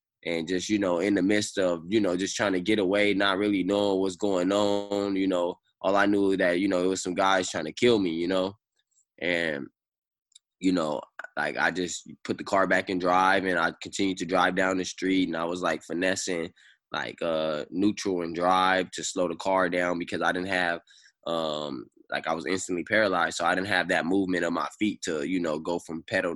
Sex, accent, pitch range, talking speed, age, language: male, American, 90-95 Hz, 225 wpm, 10-29, English